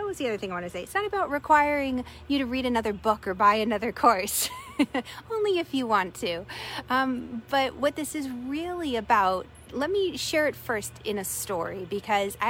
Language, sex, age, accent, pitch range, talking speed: English, female, 30-49, American, 195-255 Hz, 200 wpm